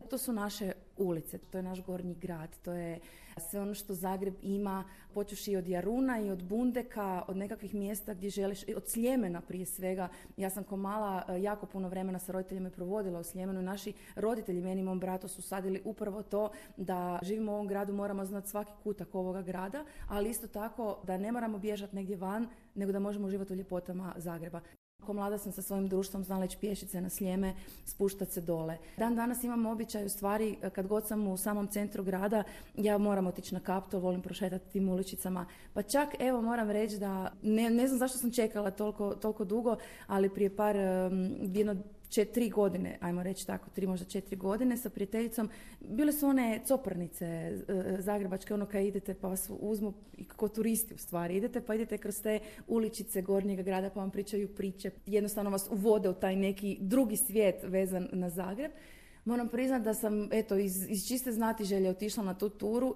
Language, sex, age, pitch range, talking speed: Croatian, female, 30-49, 190-215 Hz, 190 wpm